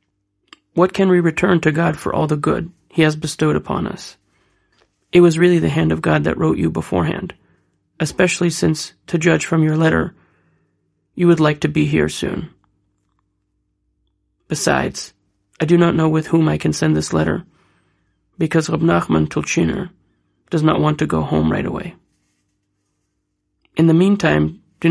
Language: English